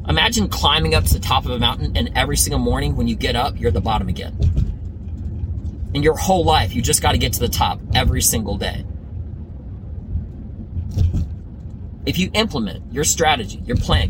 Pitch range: 85-105 Hz